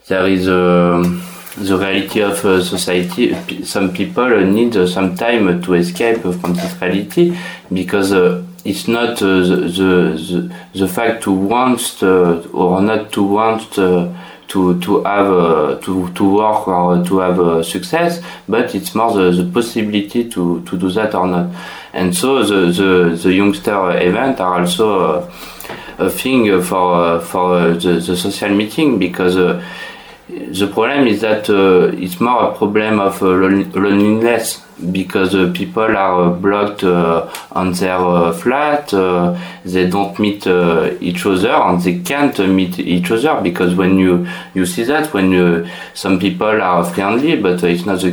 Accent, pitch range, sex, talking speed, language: French, 90-100 Hz, male, 165 wpm, English